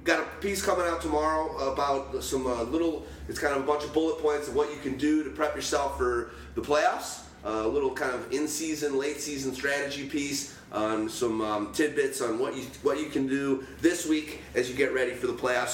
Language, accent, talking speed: English, American, 220 wpm